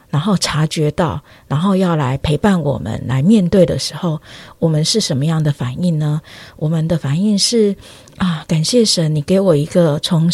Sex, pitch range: female, 145-180 Hz